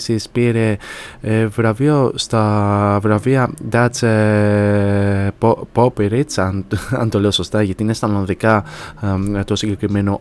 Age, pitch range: 20-39, 105-125 Hz